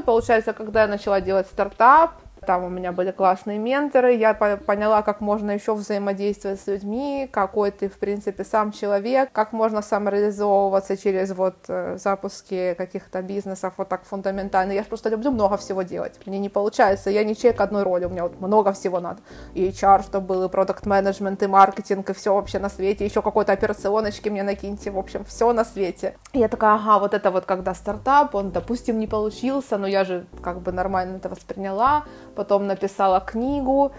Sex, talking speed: female, 190 wpm